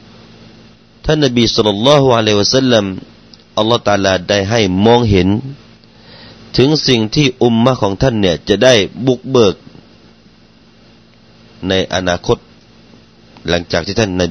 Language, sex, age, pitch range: Thai, male, 30-49, 90-115 Hz